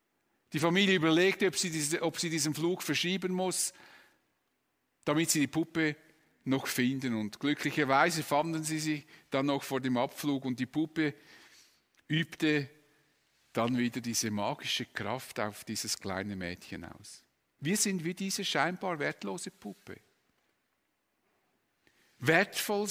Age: 50-69